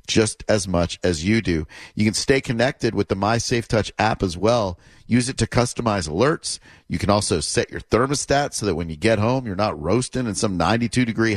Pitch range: 100-125 Hz